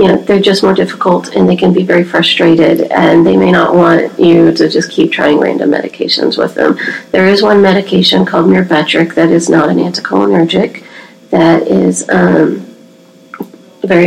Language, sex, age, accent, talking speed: English, female, 40-59, American, 165 wpm